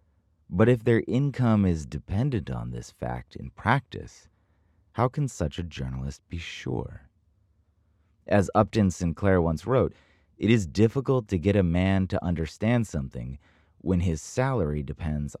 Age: 30-49